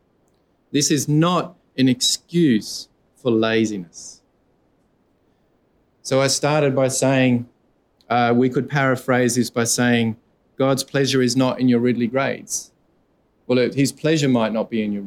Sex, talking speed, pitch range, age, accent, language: male, 140 wpm, 110-135 Hz, 30-49, Australian, English